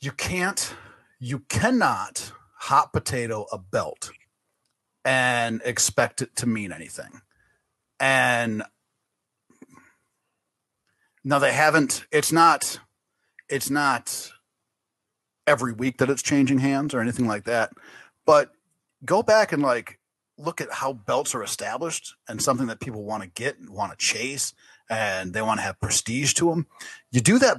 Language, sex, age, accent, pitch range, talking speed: English, male, 30-49, American, 105-130 Hz, 140 wpm